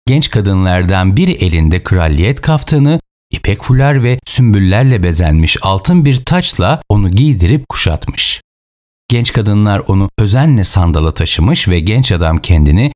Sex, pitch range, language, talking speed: male, 85-125 Hz, Turkish, 125 wpm